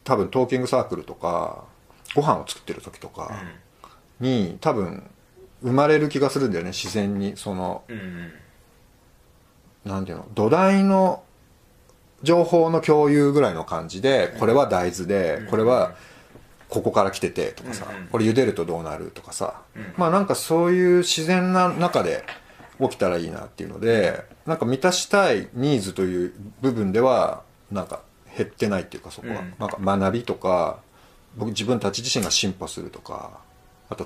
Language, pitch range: Japanese, 100-160 Hz